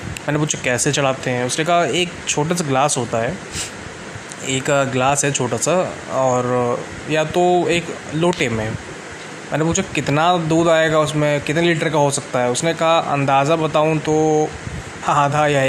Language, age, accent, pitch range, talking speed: Hindi, 20-39, native, 130-160 Hz, 165 wpm